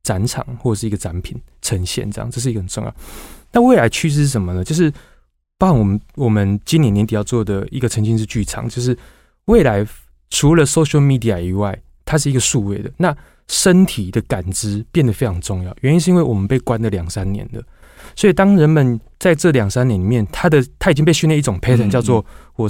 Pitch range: 105-135 Hz